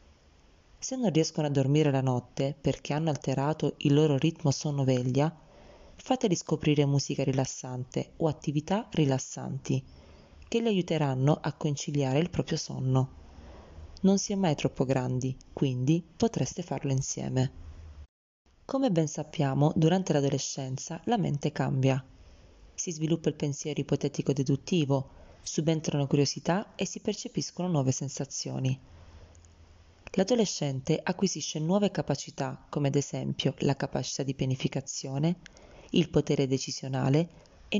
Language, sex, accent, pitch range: Italian, female, native, 130-160 Hz